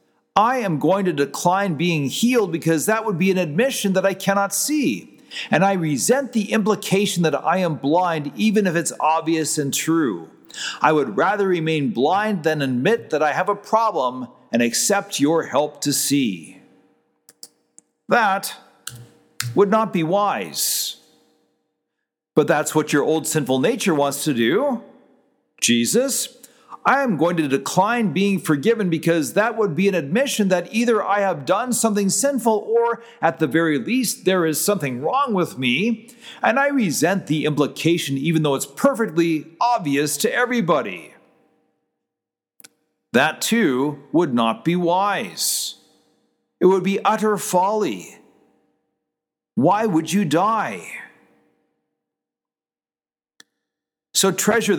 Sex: male